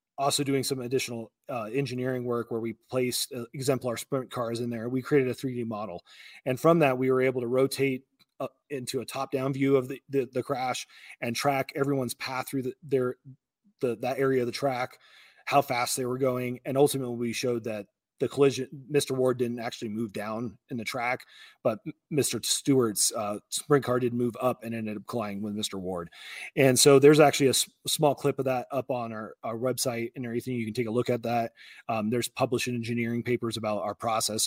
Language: English